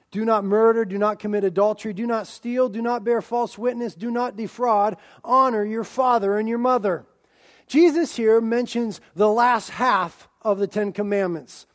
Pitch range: 200-250 Hz